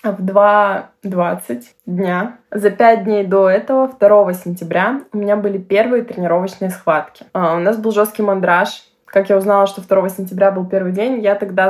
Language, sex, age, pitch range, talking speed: Russian, female, 20-39, 185-210 Hz, 170 wpm